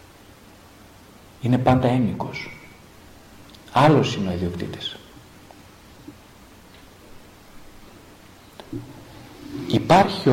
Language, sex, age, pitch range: Greek, male, 50-69, 105-140 Hz